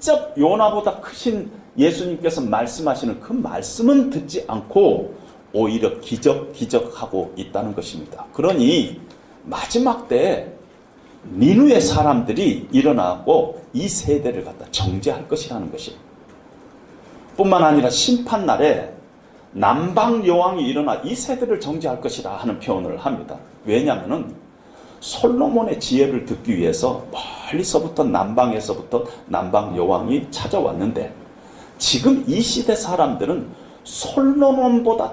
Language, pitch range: Korean, 175-260 Hz